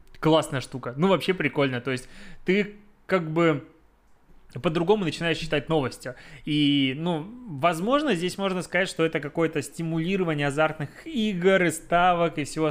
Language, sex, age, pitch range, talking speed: Russian, male, 20-39, 130-160 Hz, 140 wpm